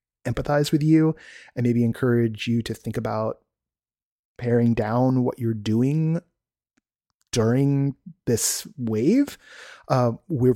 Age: 30-49